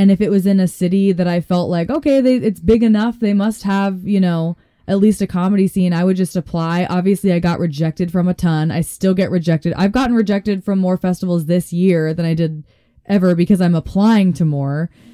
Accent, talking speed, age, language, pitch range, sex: American, 225 wpm, 20-39, English, 170-195 Hz, female